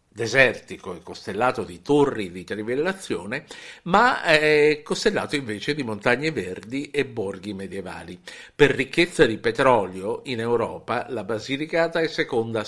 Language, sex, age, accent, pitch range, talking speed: Italian, male, 50-69, native, 110-155 Hz, 125 wpm